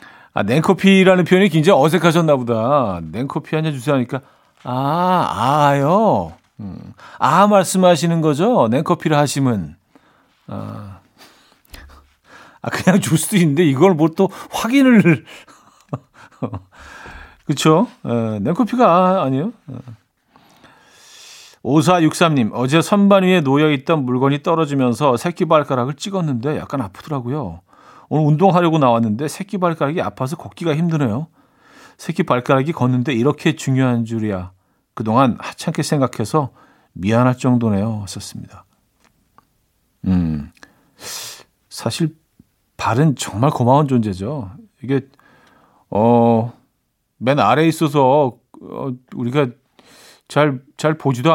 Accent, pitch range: native, 120-165 Hz